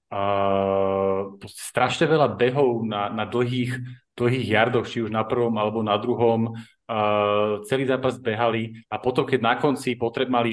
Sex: male